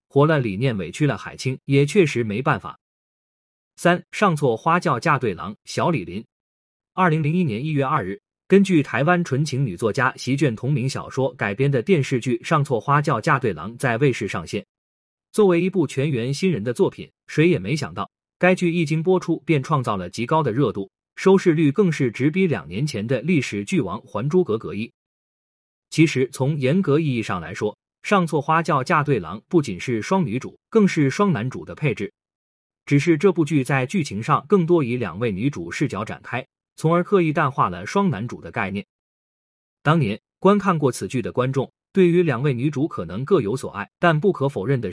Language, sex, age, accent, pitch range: Chinese, male, 30-49, native, 130-175 Hz